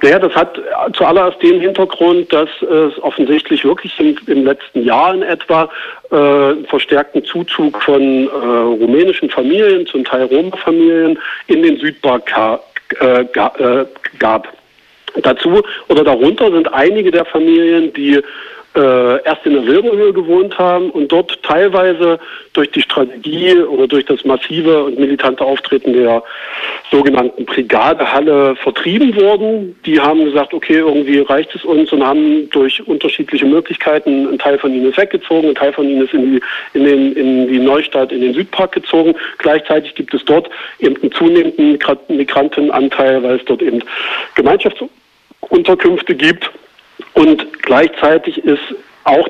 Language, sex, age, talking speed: German, male, 50-69, 140 wpm